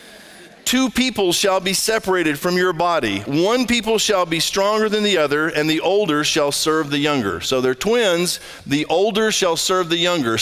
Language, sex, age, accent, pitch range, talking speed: English, male, 50-69, American, 160-215 Hz, 185 wpm